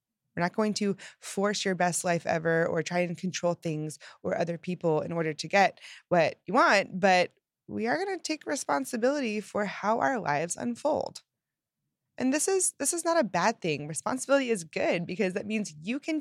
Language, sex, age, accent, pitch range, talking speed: English, female, 20-39, American, 170-250 Hz, 195 wpm